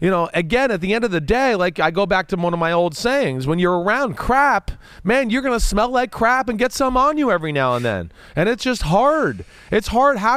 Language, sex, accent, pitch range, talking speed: English, male, American, 170-240 Hz, 260 wpm